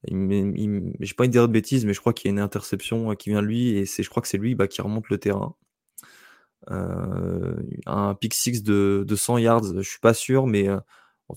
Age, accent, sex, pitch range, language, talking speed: 20-39, French, male, 100-115 Hz, French, 245 wpm